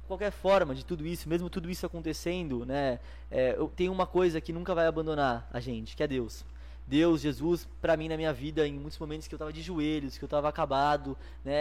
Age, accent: 20-39, Brazilian